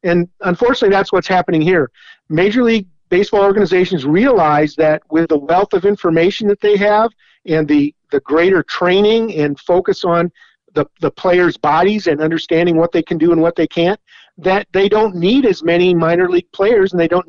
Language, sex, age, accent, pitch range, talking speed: English, male, 50-69, American, 165-200 Hz, 185 wpm